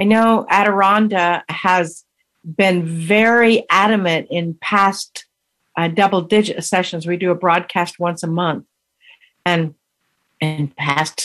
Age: 50-69